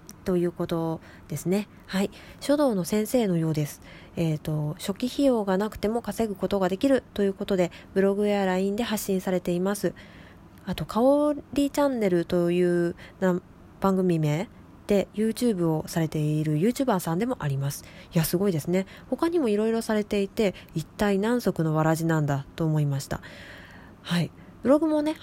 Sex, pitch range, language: female, 165-225 Hz, Japanese